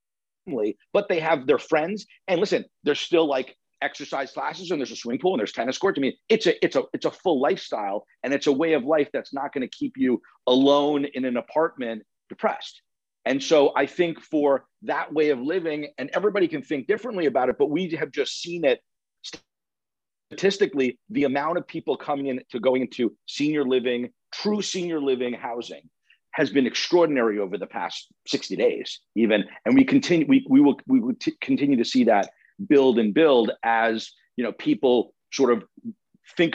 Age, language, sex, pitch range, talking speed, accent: 50-69, English, male, 130-205 Hz, 195 wpm, American